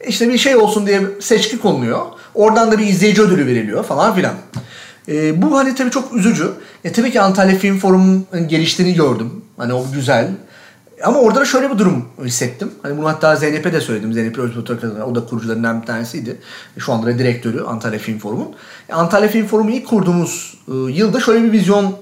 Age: 40-59